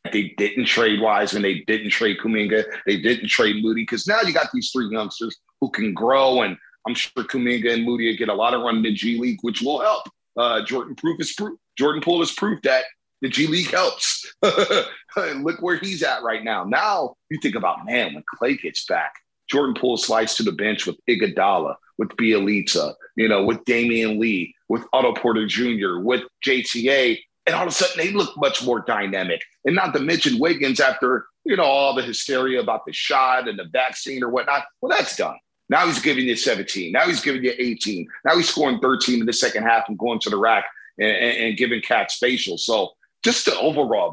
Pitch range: 115-150 Hz